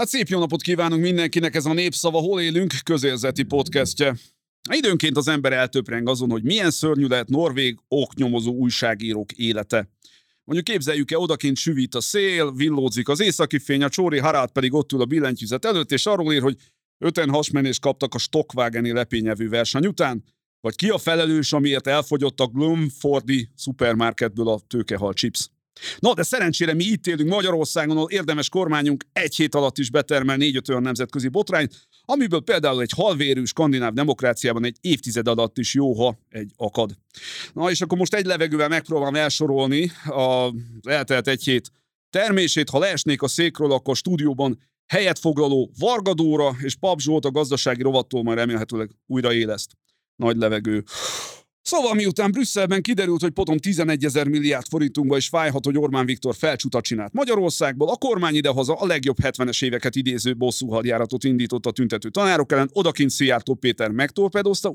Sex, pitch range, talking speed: male, 125-165 Hz, 155 wpm